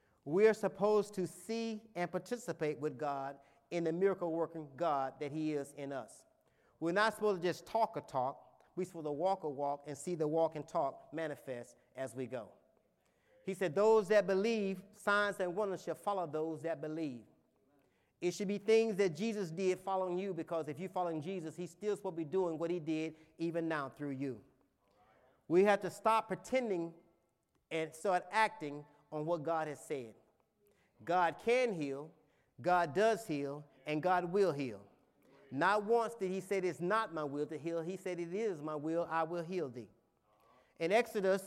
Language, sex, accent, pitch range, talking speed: English, male, American, 155-195 Hz, 185 wpm